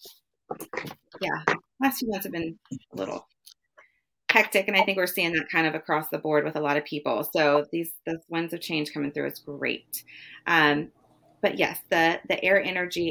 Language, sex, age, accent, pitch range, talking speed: English, female, 30-49, American, 155-190 Hz, 190 wpm